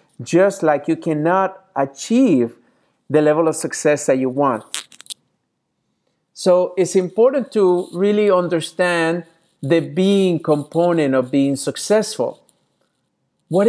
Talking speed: 110 wpm